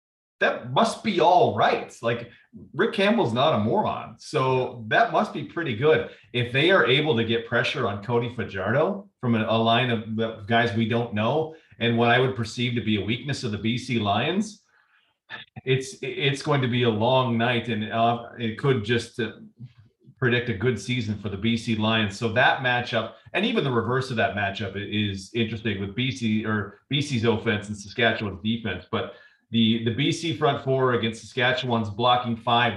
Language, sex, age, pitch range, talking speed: English, male, 40-59, 115-130 Hz, 185 wpm